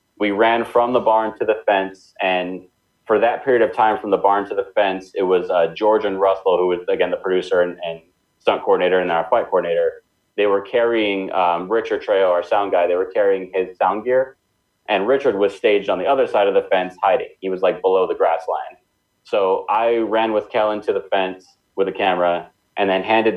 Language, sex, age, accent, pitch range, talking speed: English, male, 30-49, American, 95-115 Hz, 225 wpm